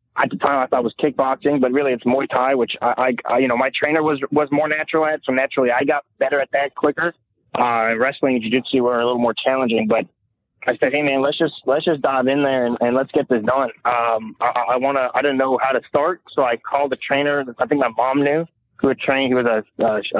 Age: 20-39